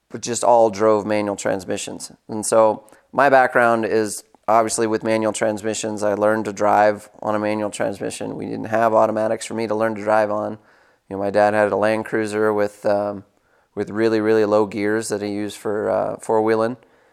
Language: English